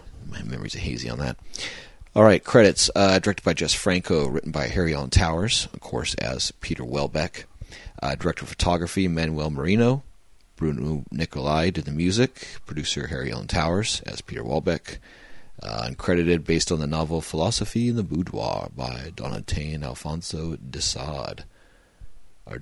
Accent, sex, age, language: American, male, 40-59, English